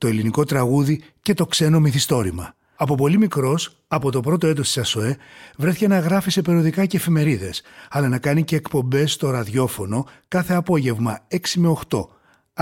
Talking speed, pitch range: 165 wpm, 125-165 Hz